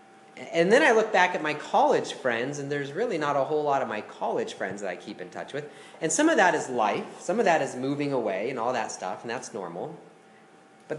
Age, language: 30-49, English